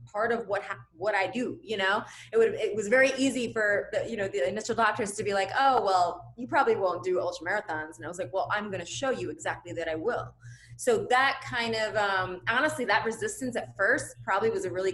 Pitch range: 175-225 Hz